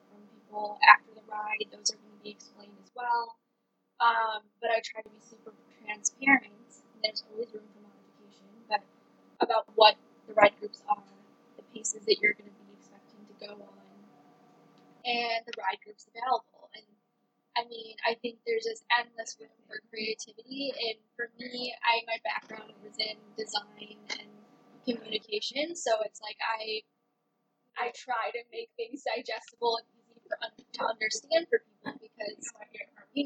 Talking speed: 155 wpm